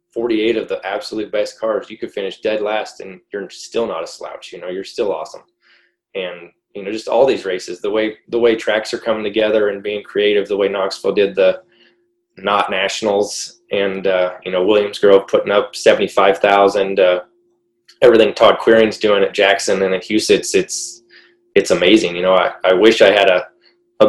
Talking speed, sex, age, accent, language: 195 wpm, male, 20-39, American, English